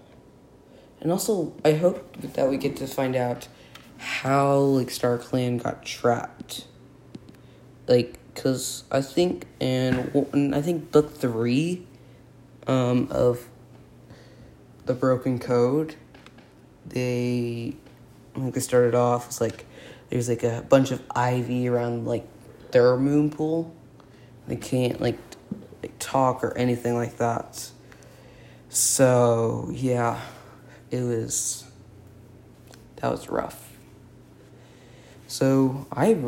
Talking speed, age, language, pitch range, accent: 115 wpm, 20-39, English, 120-140 Hz, American